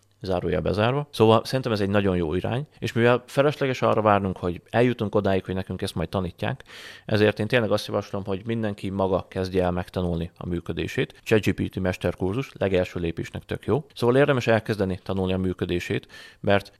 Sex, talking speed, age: male, 170 wpm, 30-49